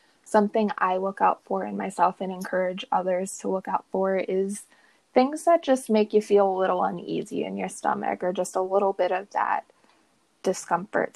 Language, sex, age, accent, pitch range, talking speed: English, female, 20-39, American, 190-215 Hz, 190 wpm